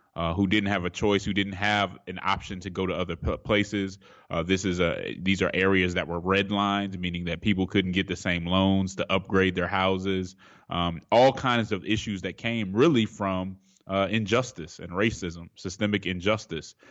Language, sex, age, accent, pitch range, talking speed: English, male, 20-39, American, 90-105 Hz, 190 wpm